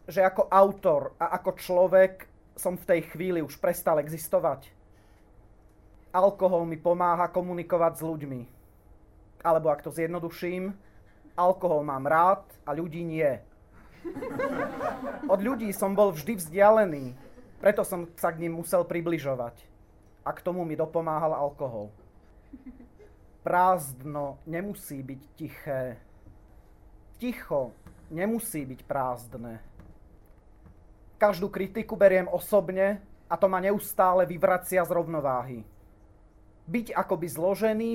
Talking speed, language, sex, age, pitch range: 110 wpm, Czech, male, 30-49, 125-195 Hz